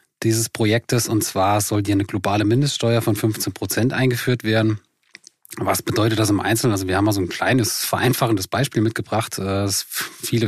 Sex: male